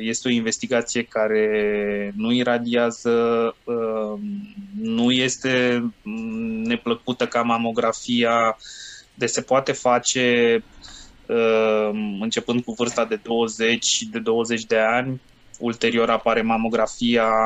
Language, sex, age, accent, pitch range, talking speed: Romanian, male, 20-39, native, 115-130 Hz, 95 wpm